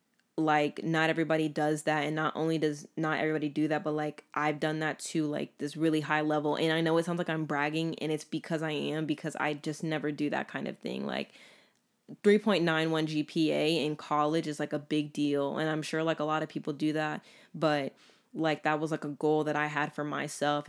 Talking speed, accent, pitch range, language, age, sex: 225 wpm, American, 150-160 Hz, English, 10-29, female